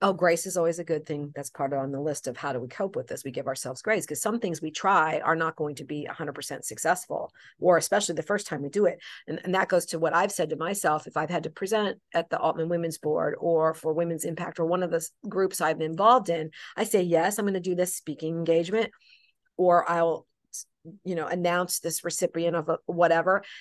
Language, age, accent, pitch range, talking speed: English, 50-69, American, 170-215 Hz, 250 wpm